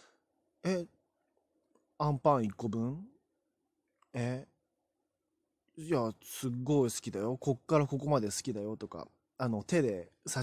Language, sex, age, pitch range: Japanese, male, 20-39, 110-185 Hz